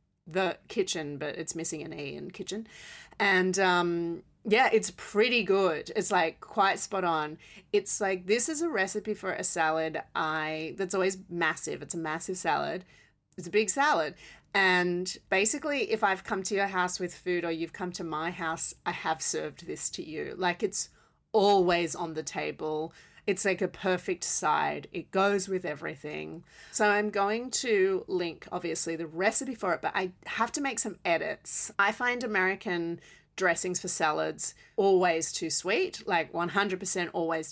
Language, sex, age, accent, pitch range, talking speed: English, female, 30-49, Australian, 170-205 Hz, 170 wpm